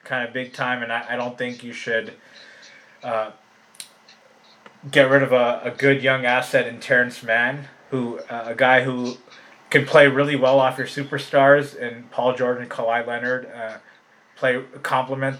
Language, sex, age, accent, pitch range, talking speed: English, male, 20-39, American, 125-140 Hz, 170 wpm